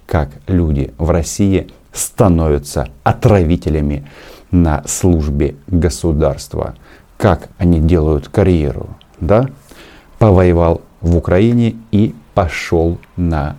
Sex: male